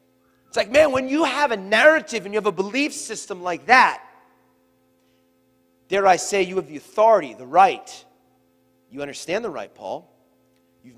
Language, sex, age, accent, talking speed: English, male, 30-49, American, 170 wpm